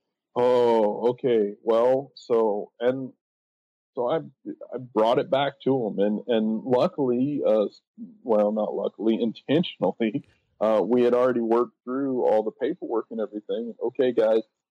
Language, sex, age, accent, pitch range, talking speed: English, male, 40-59, American, 120-150 Hz, 135 wpm